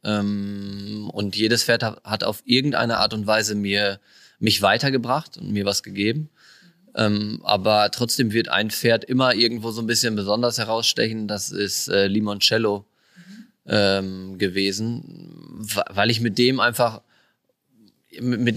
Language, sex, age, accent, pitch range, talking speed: German, male, 20-39, German, 105-135 Hz, 125 wpm